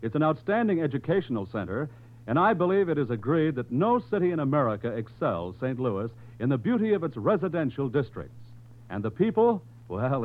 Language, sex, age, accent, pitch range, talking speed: English, male, 60-79, American, 115-175 Hz, 175 wpm